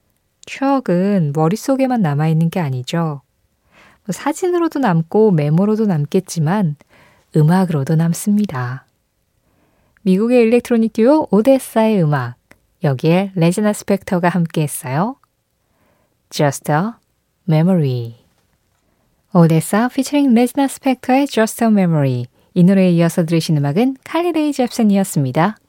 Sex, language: female, Korean